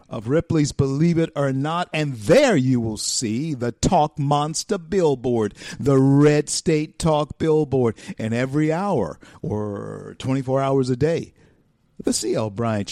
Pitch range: 130-185 Hz